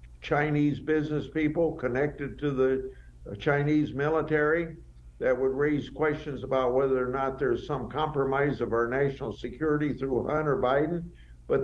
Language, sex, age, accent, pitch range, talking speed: English, male, 60-79, American, 115-150 Hz, 140 wpm